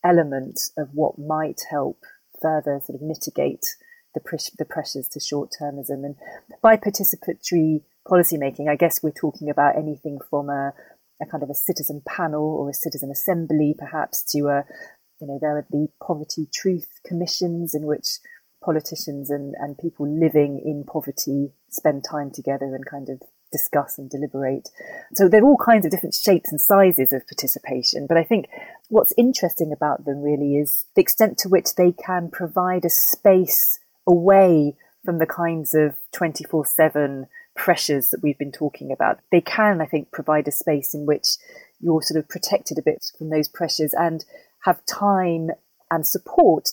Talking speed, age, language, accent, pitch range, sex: 170 wpm, 30-49, English, British, 145-190 Hz, female